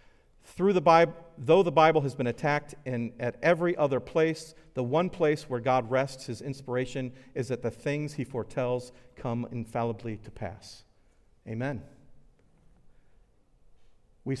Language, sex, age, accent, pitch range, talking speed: English, male, 50-69, American, 115-140 Hz, 140 wpm